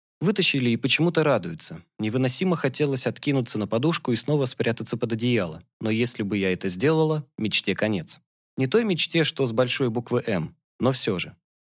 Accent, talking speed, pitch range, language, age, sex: native, 170 wpm, 110-150 Hz, Russian, 20-39, male